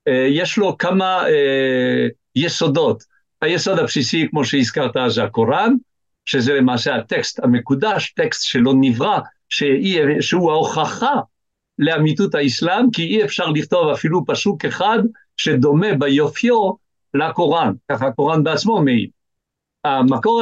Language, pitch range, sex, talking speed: Hebrew, 135-210 Hz, male, 110 wpm